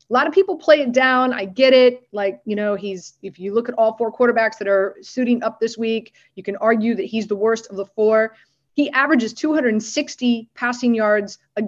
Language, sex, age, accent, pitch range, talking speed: English, female, 30-49, American, 210-255 Hz, 220 wpm